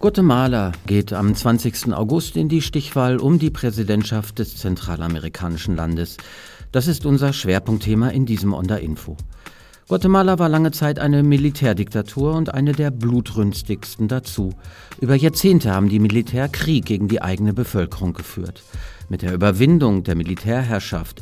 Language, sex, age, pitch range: German, male, 50-69, 95-130 Hz